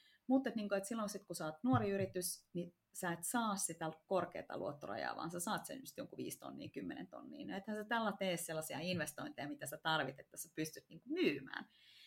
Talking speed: 195 wpm